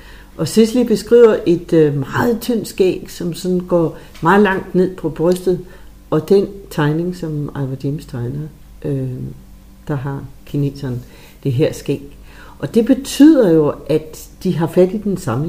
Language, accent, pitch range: English, Danish, 150-210 Hz